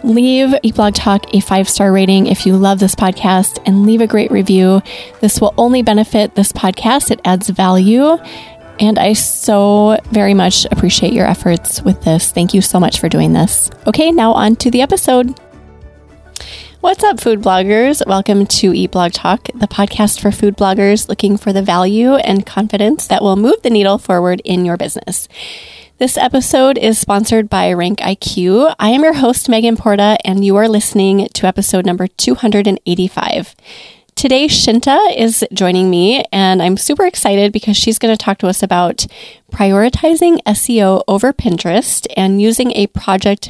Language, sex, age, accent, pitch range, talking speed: English, female, 20-39, American, 190-225 Hz, 170 wpm